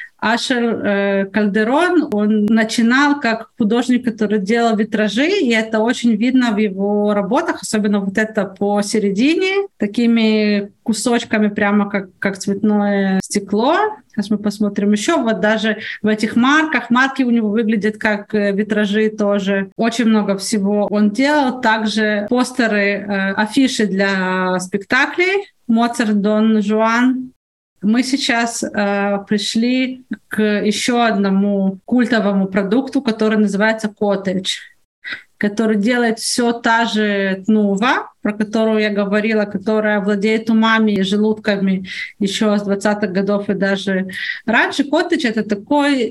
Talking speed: 125 wpm